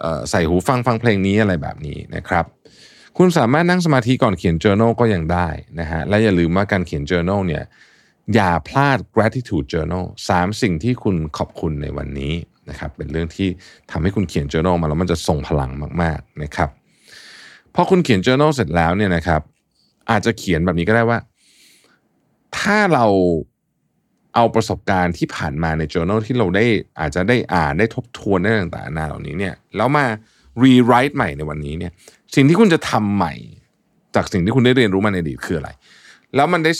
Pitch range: 80-115 Hz